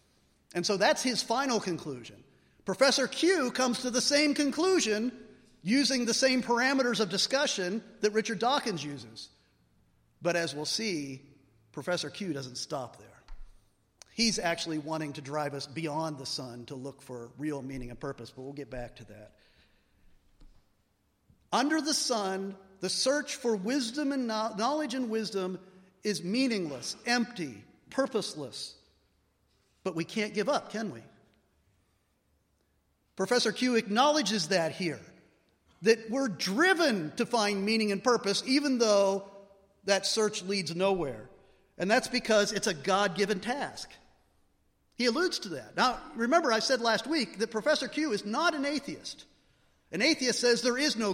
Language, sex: English, male